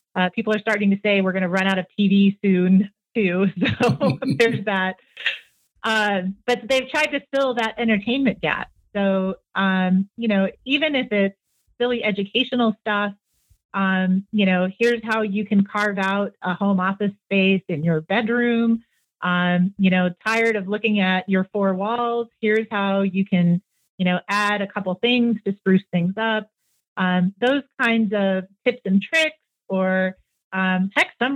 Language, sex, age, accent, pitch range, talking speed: English, female, 30-49, American, 190-230 Hz, 165 wpm